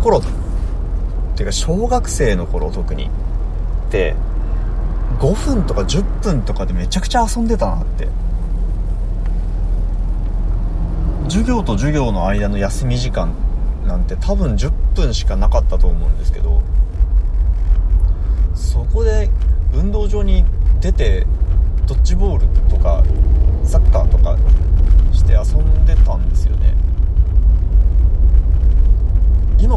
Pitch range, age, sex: 70-90 Hz, 30-49, male